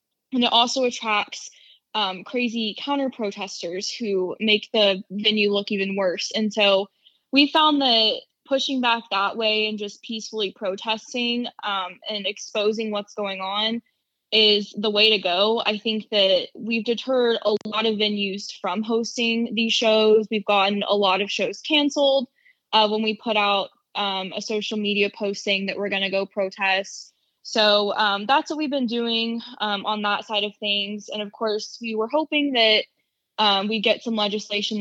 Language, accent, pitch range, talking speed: English, American, 200-230 Hz, 170 wpm